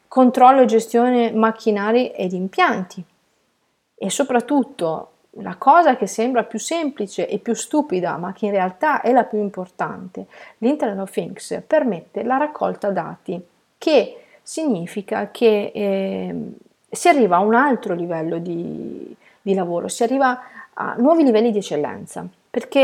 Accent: native